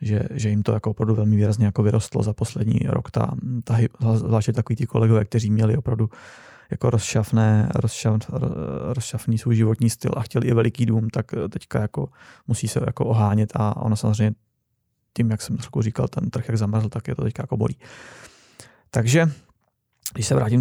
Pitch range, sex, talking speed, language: 110-125 Hz, male, 180 wpm, Czech